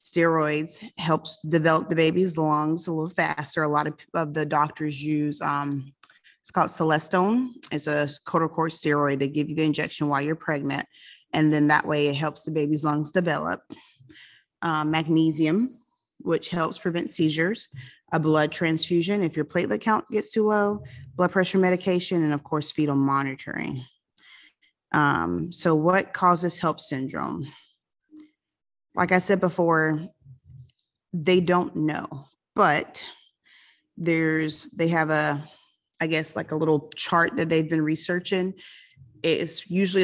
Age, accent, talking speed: 30-49, American, 145 wpm